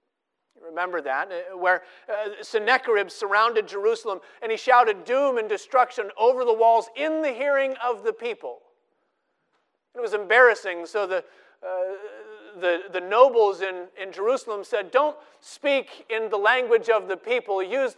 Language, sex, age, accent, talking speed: English, male, 40-59, American, 140 wpm